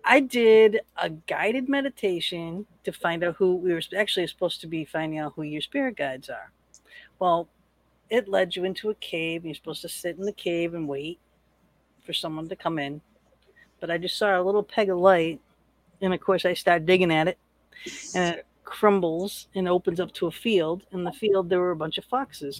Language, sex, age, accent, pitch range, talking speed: English, female, 50-69, American, 170-205 Hz, 205 wpm